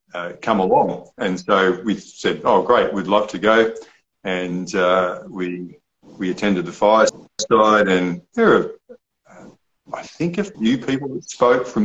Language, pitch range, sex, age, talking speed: English, 90-110 Hz, male, 50-69, 160 wpm